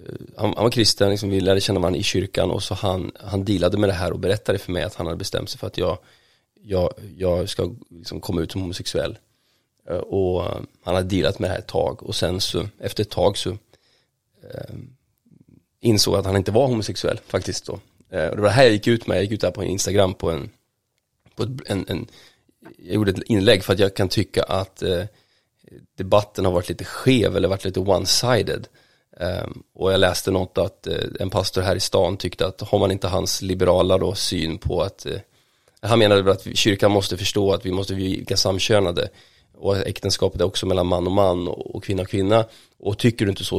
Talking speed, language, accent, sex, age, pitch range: 215 wpm, English, Swedish, male, 30-49, 95-105 Hz